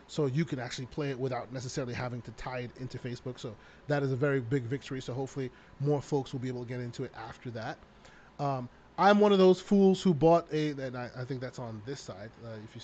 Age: 30-49